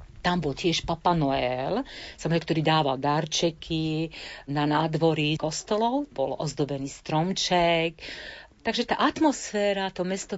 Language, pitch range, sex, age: Slovak, 150-180 Hz, female, 40-59